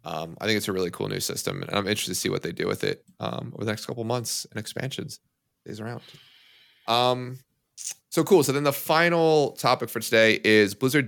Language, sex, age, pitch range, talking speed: English, male, 30-49, 105-130 Hz, 225 wpm